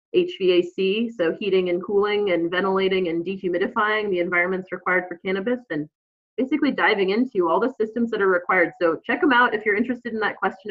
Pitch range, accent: 180-225 Hz, American